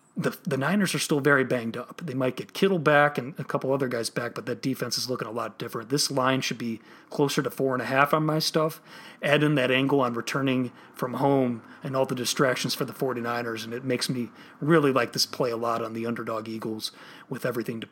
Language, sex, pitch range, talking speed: English, male, 125-150 Hz, 230 wpm